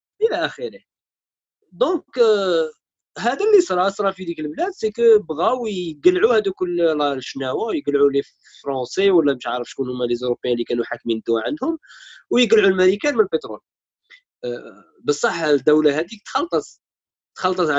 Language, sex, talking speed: Arabic, male, 135 wpm